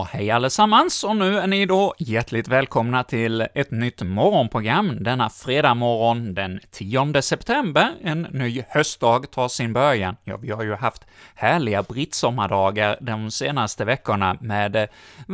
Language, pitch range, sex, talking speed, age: Swedish, 105-140 Hz, male, 150 wpm, 30-49